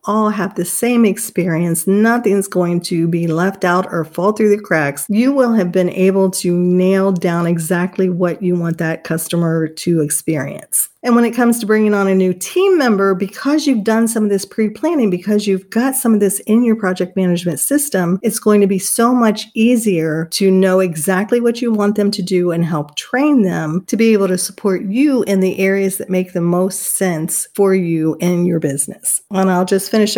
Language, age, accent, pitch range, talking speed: English, 50-69, American, 185-240 Hz, 210 wpm